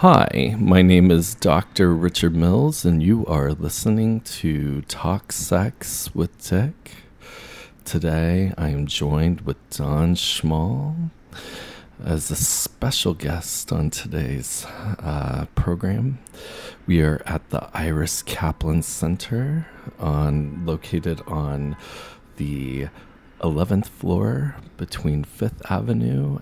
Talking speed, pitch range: 105 wpm, 75-100 Hz